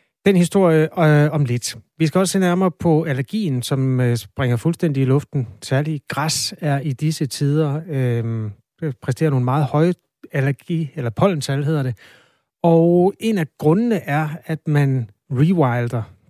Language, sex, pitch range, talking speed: Danish, male, 125-155 Hz, 155 wpm